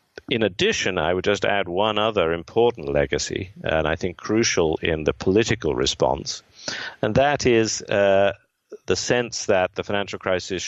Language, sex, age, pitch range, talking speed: English, male, 50-69, 85-100 Hz, 155 wpm